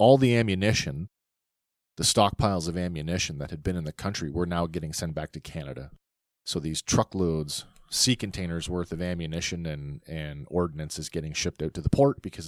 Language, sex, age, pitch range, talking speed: English, male, 40-59, 80-100 Hz, 185 wpm